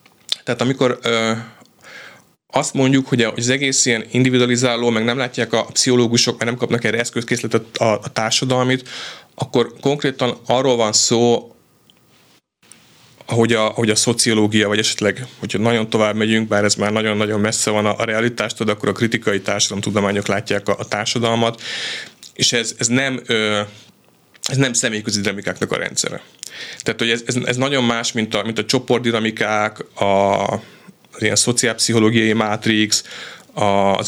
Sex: male